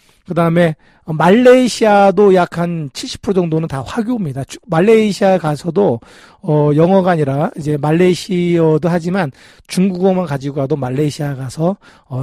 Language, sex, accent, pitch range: Korean, male, native, 155-200 Hz